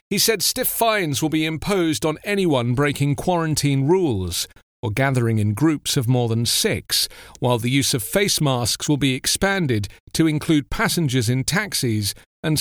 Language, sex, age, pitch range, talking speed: English, male, 40-59, 125-175 Hz, 165 wpm